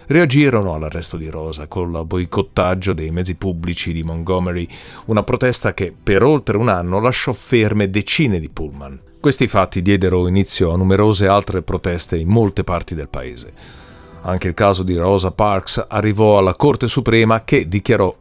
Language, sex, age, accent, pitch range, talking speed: Italian, male, 40-59, native, 90-120 Hz, 160 wpm